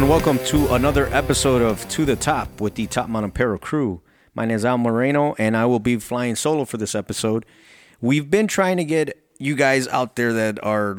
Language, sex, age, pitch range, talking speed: English, male, 30-49, 100-125 Hz, 220 wpm